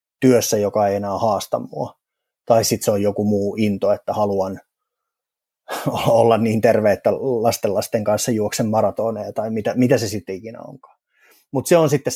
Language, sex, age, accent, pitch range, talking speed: Finnish, male, 30-49, native, 110-140 Hz, 175 wpm